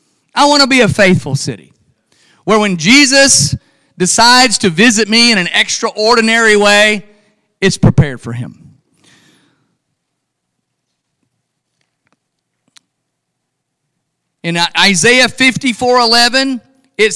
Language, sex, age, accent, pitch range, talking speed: English, male, 40-59, American, 180-240 Hz, 95 wpm